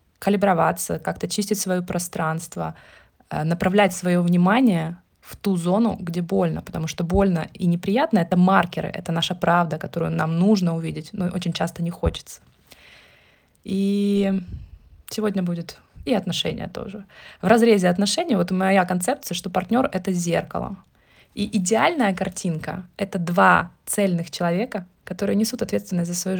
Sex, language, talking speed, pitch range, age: female, Ukrainian, 145 wpm, 175-200 Hz, 20-39